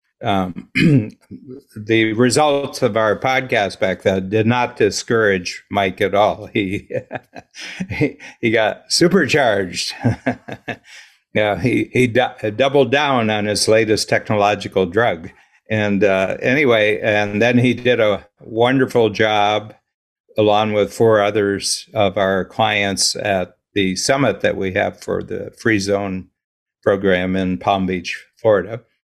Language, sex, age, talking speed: English, male, 60-79, 130 wpm